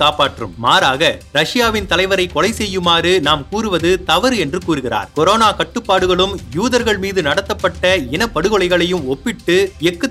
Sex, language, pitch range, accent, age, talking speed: male, Tamil, 165-210 Hz, native, 30-49, 120 wpm